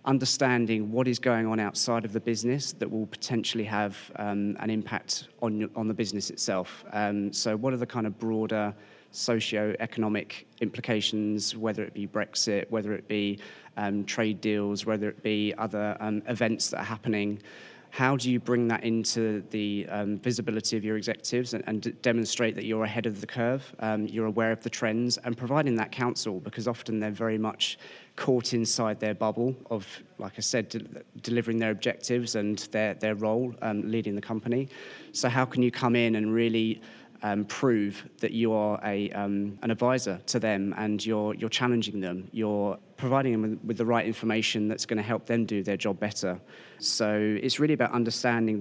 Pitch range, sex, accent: 105-120 Hz, male, British